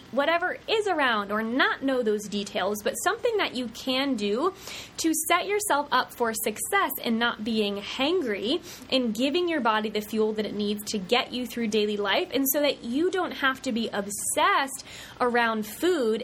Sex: female